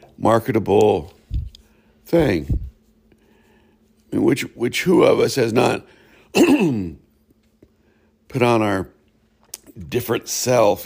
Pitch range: 95-115 Hz